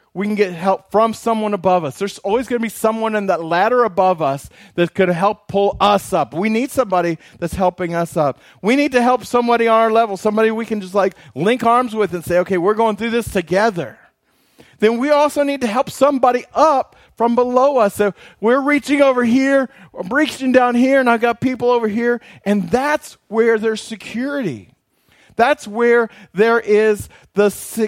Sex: male